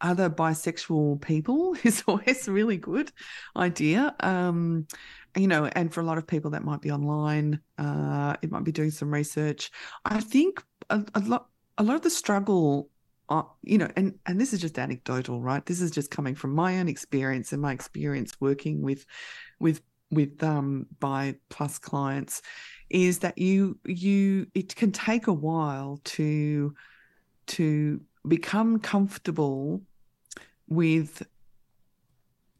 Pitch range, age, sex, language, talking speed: 145-190 Hz, 30-49, female, English, 150 wpm